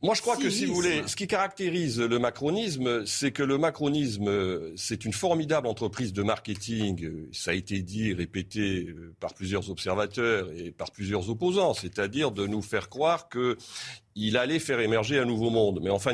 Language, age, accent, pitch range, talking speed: French, 50-69, French, 110-150 Hz, 185 wpm